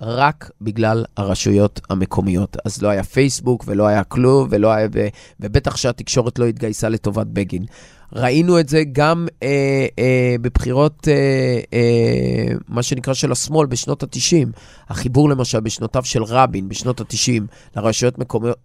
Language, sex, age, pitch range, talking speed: Hebrew, male, 20-39, 115-150 Hz, 135 wpm